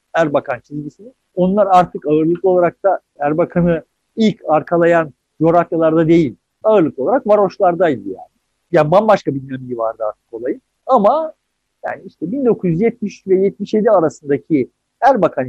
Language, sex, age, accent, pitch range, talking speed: Turkish, male, 50-69, native, 160-230 Hz, 125 wpm